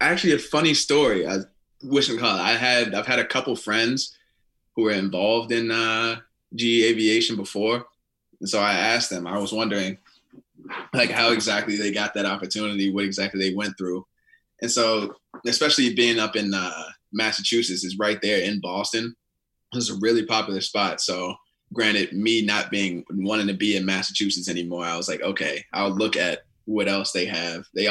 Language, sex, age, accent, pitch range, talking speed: English, male, 20-39, American, 100-110 Hz, 185 wpm